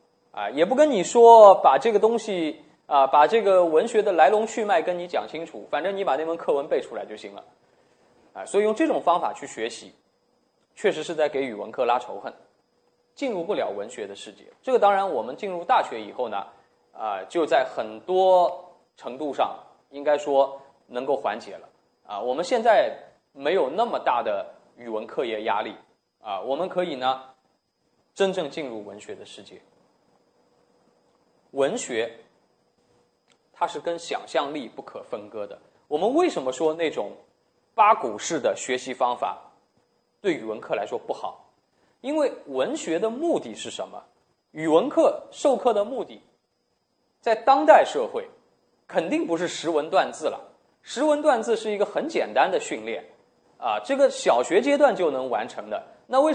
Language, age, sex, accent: Chinese, 20-39, male, native